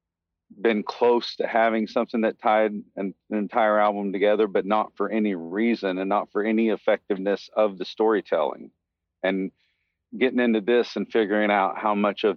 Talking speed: 170 wpm